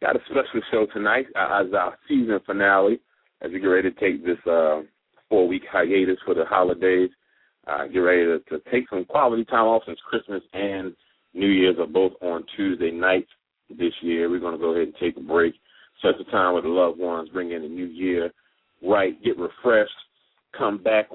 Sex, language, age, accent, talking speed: male, English, 30-49, American, 195 wpm